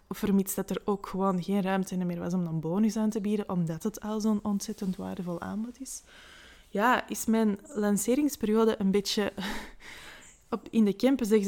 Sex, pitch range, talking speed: female, 185-215 Hz, 175 wpm